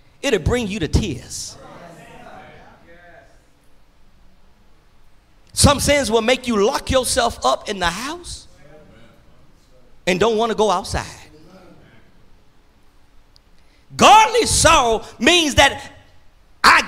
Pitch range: 215-355 Hz